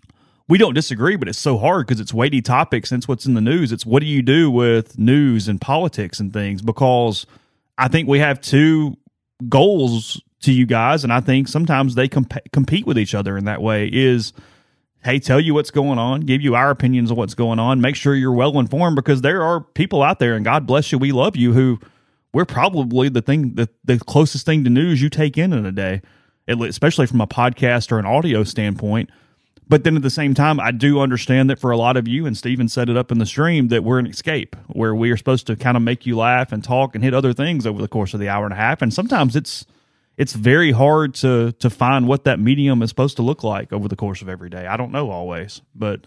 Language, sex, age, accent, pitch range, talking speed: English, male, 30-49, American, 110-140 Hz, 245 wpm